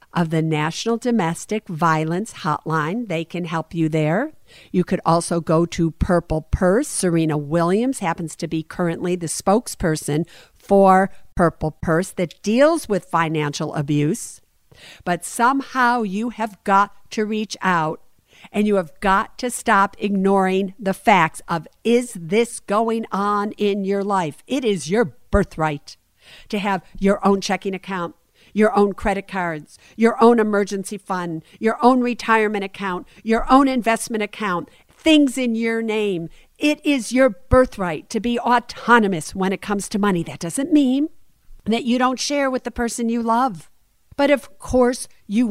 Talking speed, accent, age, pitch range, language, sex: 155 wpm, American, 50-69, 170-235 Hz, English, female